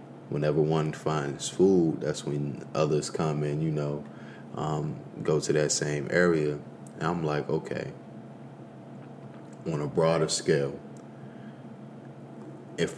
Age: 30-49